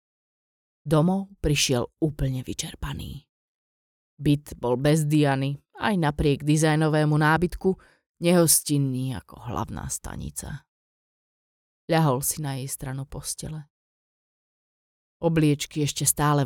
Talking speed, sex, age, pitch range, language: 90 wpm, female, 30-49, 125-155 Hz, Slovak